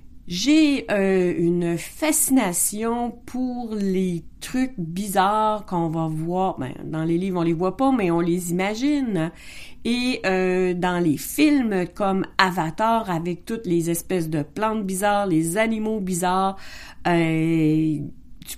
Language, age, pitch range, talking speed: French, 40-59, 175-230 Hz, 135 wpm